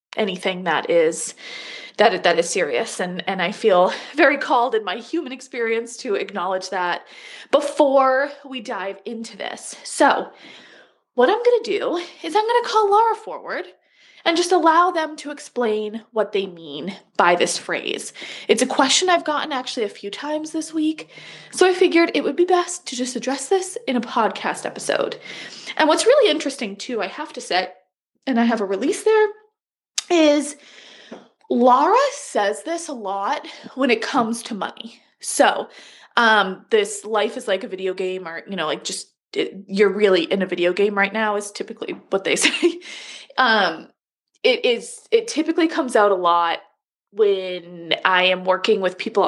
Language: English